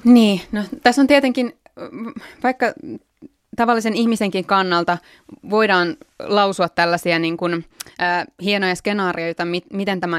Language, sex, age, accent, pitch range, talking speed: Finnish, female, 20-39, native, 175-205 Hz, 120 wpm